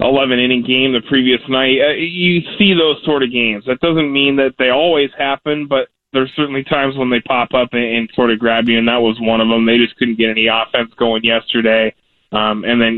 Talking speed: 230 wpm